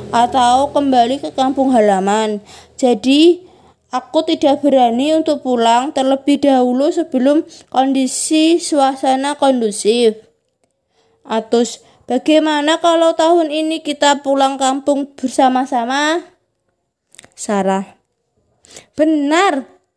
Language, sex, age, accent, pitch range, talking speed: Indonesian, female, 20-39, native, 230-310 Hz, 85 wpm